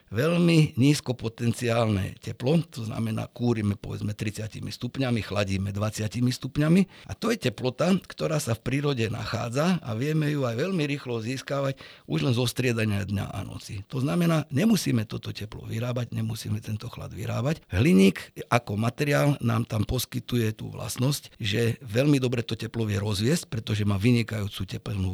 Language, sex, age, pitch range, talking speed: Slovak, male, 50-69, 115-145 Hz, 155 wpm